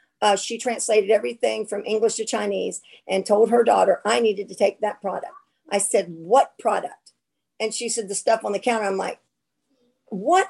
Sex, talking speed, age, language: female, 190 wpm, 50-69, English